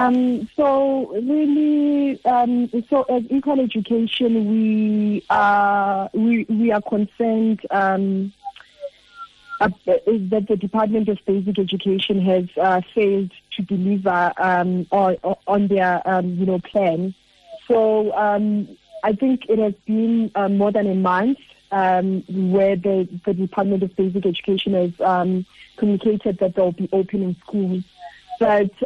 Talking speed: 130 wpm